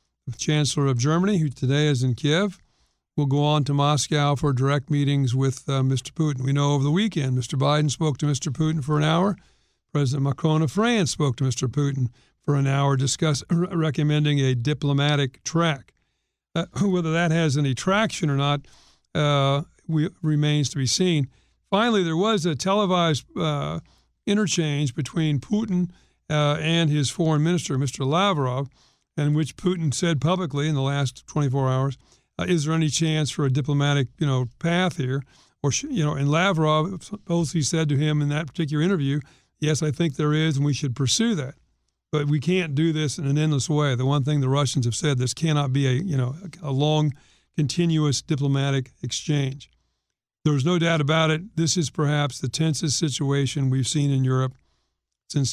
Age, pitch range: 50-69, 135-160 Hz